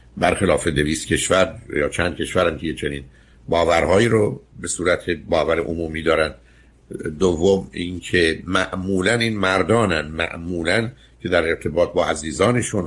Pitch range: 70-100 Hz